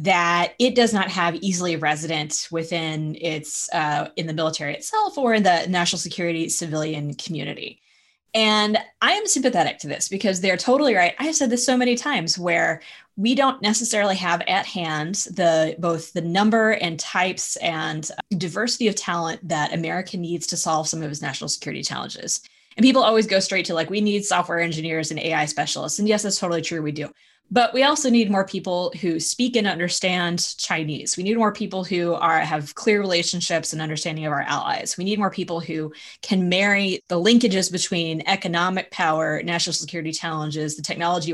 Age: 20-39